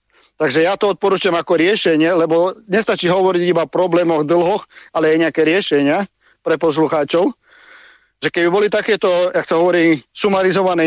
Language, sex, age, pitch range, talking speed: Slovak, male, 50-69, 160-180 Hz, 150 wpm